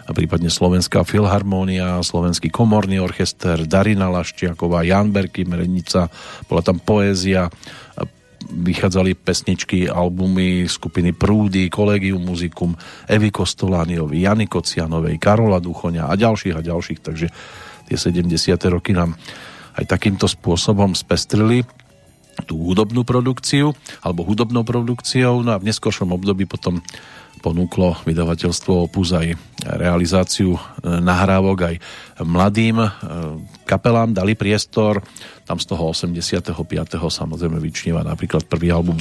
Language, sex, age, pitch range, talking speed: Slovak, male, 40-59, 85-105 Hz, 115 wpm